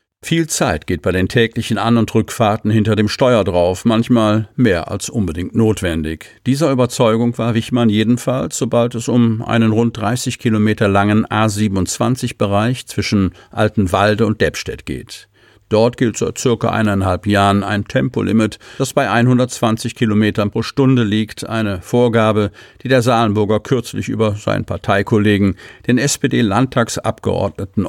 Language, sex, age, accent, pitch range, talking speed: German, male, 50-69, German, 100-120 Hz, 140 wpm